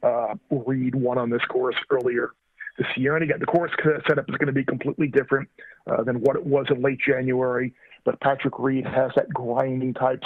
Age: 40-59